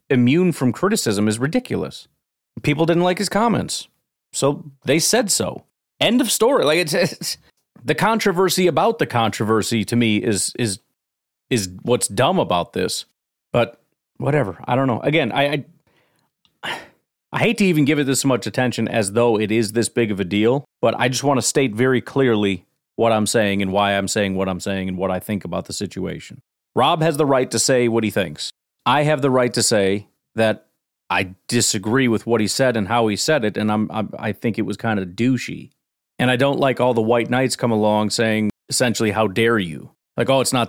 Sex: male